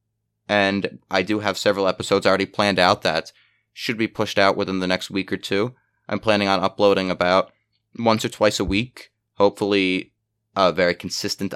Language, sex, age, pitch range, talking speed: English, male, 30-49, 95-110 Hz, 175 wpm